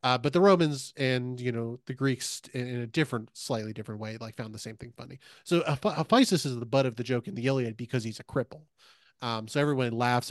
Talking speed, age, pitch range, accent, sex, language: 235 wpm, 30-49, 115-130 Hz, American, male, English